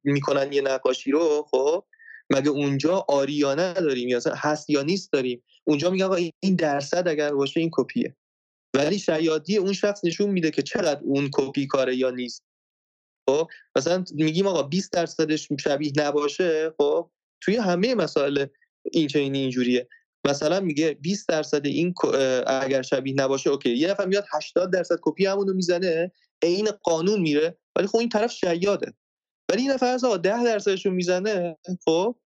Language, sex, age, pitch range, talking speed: Persian, male, 20-39, 140-195 Hz, 155 wpm